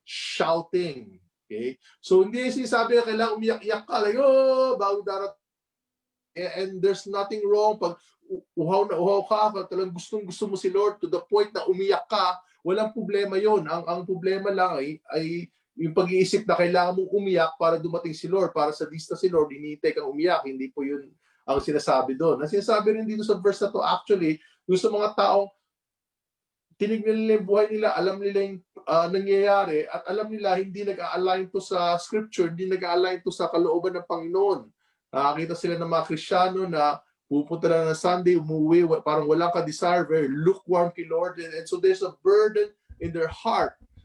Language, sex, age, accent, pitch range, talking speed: Filipino, male, 20-39, native, 170-205 Hz, 180 wpm